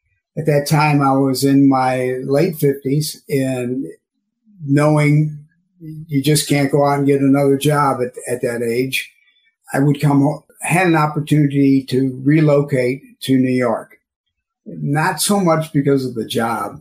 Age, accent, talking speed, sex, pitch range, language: 50-69, American, 150 wpm, male, 130-150 Hz, English